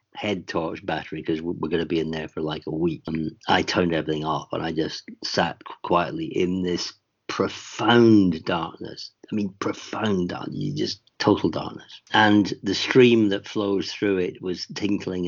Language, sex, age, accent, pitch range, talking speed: English, male, 50-69, British, 85-110 Hz, 175 wpm